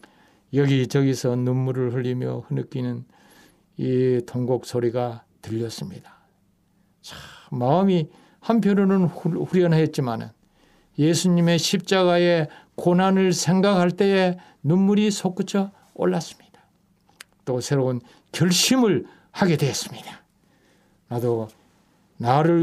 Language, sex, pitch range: Korean, male, 135-200 Hz